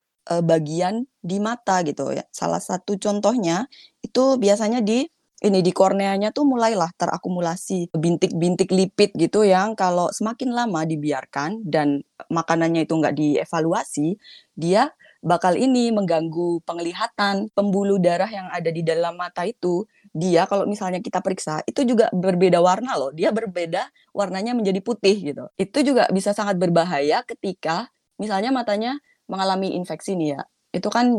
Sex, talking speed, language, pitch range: female, 140 wpm, Indonesian, 165-210 Hz